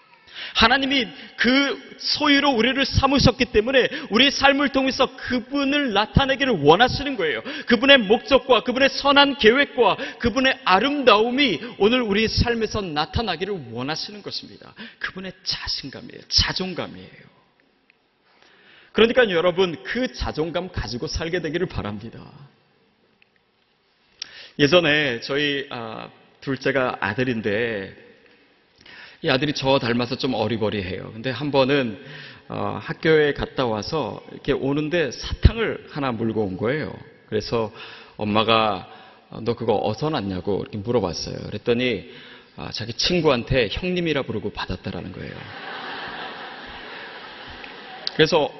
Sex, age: male, 40-59